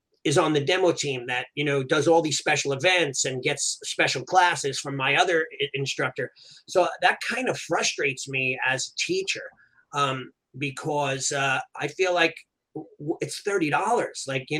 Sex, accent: male, American